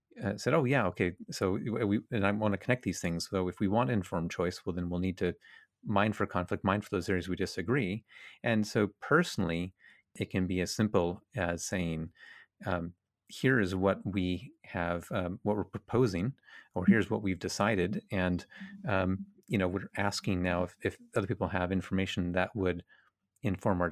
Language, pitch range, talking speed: English, 90-105 Hz, 190 wpm